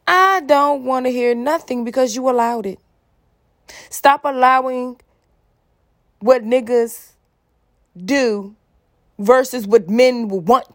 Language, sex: English, female